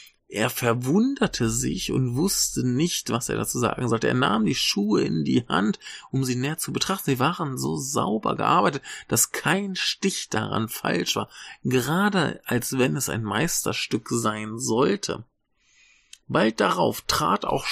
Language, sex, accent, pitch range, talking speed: German, male, German, 115-175 Hz, 155 wpm